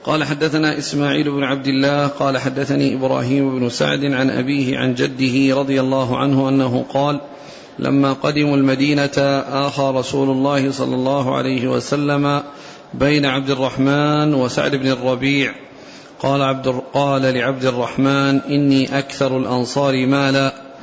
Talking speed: 125 wpm